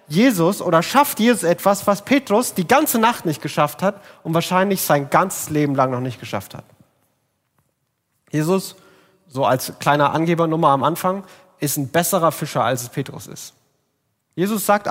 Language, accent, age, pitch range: German, German, 30-49, 155-225 Hz